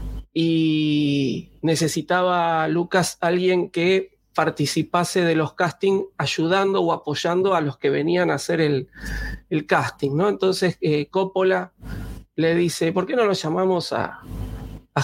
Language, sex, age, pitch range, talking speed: Spanish, male, 40-59, 145-180 Hz, 135 wpm